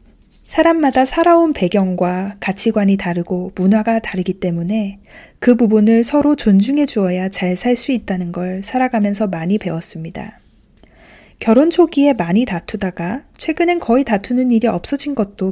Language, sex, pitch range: Korean, female, 180-245 Hz